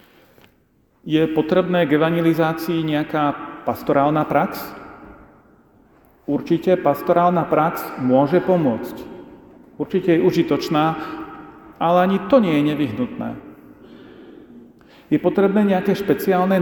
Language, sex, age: Slovak, male, 40-59